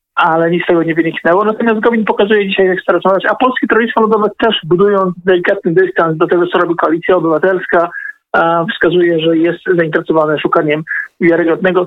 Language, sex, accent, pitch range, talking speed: Polish, male, native, 165-190 Hz, 160 wpm